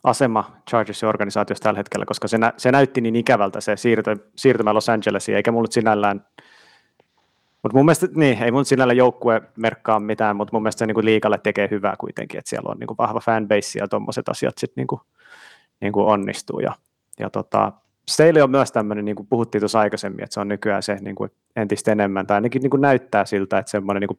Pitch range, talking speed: 105-120 Hz, 195 wpm